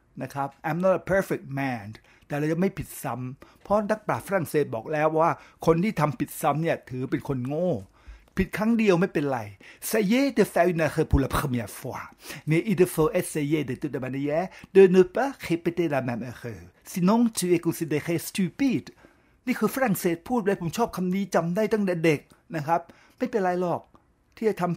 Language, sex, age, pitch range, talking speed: English, male, 60-79, 160-215 Hz, 60 wpm